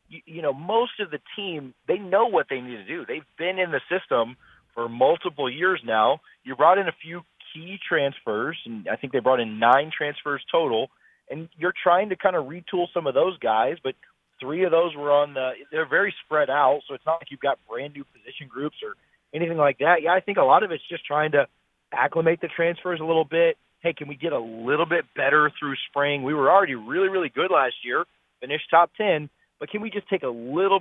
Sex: male